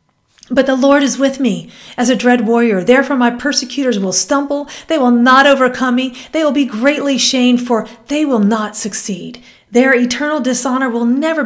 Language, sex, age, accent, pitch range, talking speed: English, female, 40-59, American, 205-270 Hz, 185 wpm